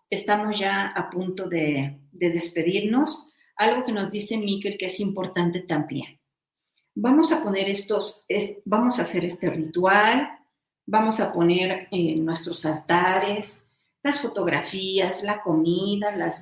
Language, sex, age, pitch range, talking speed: Spanish, female, 40-59, 175-215 Hz, 130 wpm